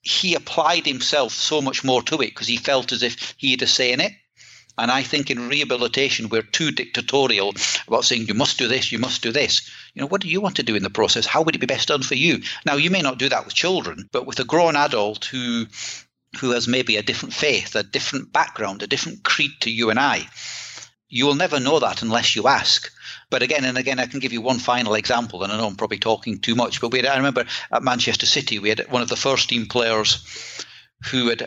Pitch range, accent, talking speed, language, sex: 115-135 Hz, British, 250 wpm, English, male